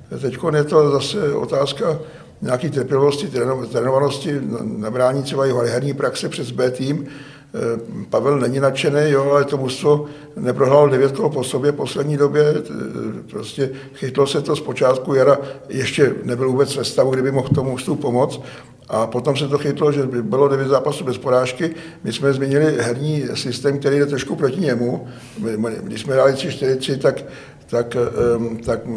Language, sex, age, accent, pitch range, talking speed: Czech, male, 60-79, native, 125-145 Hz, 160 wpm